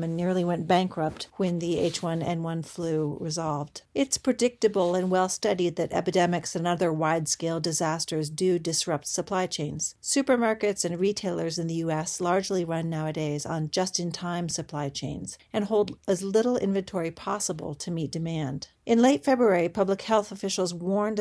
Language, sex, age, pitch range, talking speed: English, female, 40-59, 160-195 Hz, 145 wpm